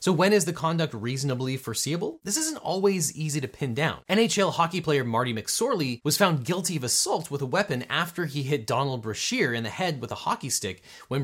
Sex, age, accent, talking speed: male, 30-49, American, 215 wpm